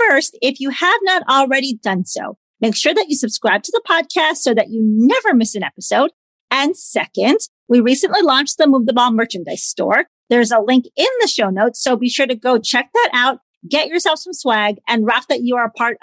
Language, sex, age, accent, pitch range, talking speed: English, female, 40-59, American, 220-285 Hz, 225 wpm